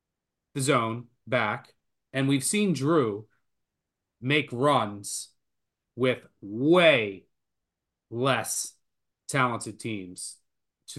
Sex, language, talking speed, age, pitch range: male, English, 80 wpm, 30-49, 110-140 Hz